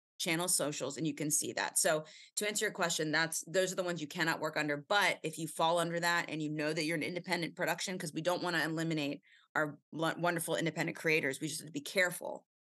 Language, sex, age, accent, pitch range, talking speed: English, female, 30-49, American, 150-180 Hz, 235 wpm